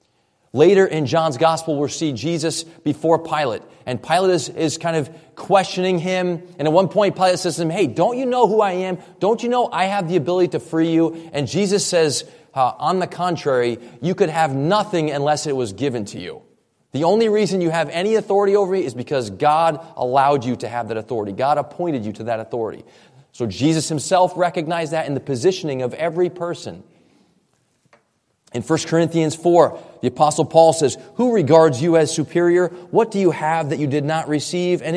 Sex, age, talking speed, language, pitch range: male, 30-49, 200 wpm, English, 150-180 Hz